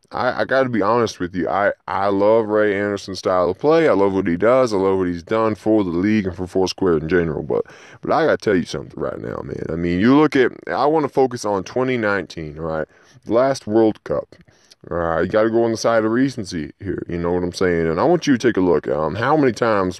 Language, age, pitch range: English, 20-39, 95-135 Hz